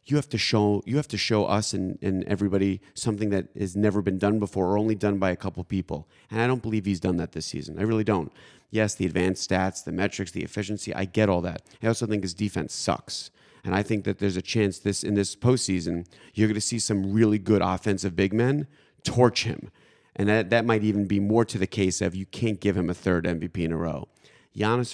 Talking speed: 245 wpm